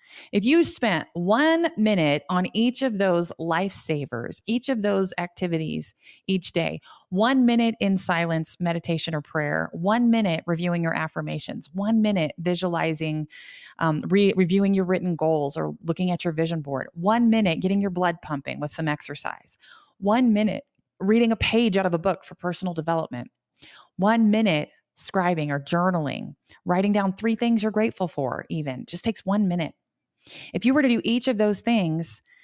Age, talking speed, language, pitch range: 20-39, 165 wpm, English, 165-220 Hz